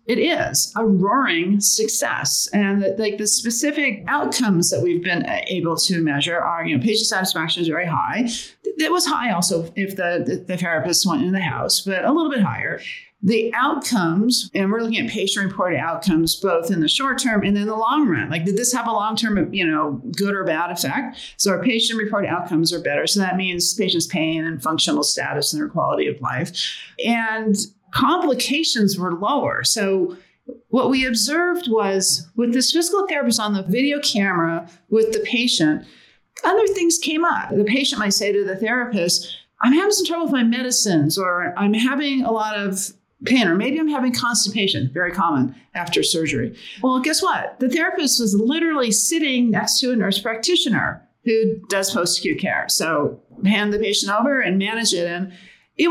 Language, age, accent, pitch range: English, 50-69, American, 185-255 Hz